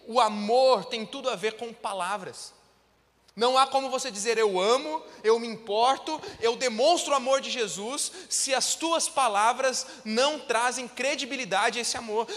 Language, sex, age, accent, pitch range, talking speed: Portuguese, male, 20-39, Brazilian, 180-260 Hz, 165 wpm